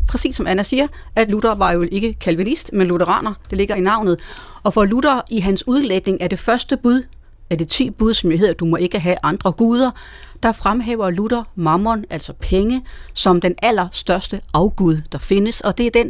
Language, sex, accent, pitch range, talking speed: Danish, female, native, 175-225 Hz, 210 wpm